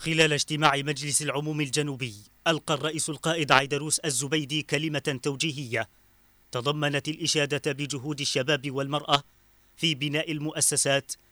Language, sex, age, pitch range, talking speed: Arabic, male, 30-49, 140-165 Hz, 105 wpm